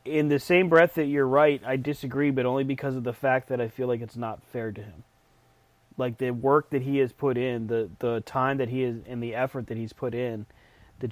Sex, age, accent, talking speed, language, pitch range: male, 30-49, American, 250 wpm, English, 120-140 Hz